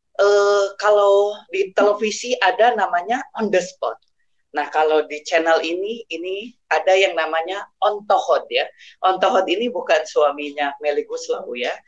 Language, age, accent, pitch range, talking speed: Indonesian, 30-49, native, 150-230 Hz, 140 wpm